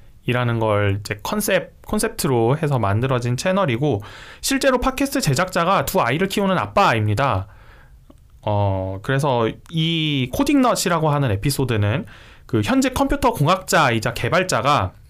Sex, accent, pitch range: male, native, 115-180 Hz